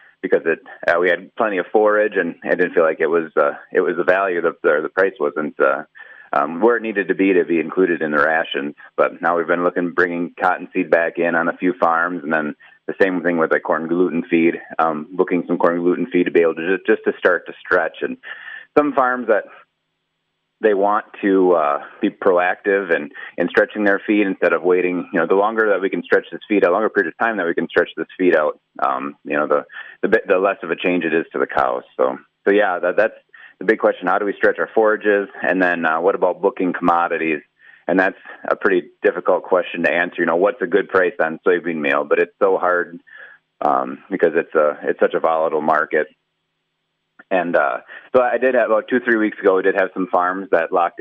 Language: English